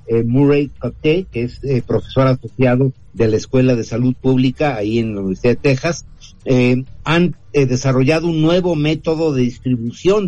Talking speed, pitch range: 170 wpm, 120-150 Hz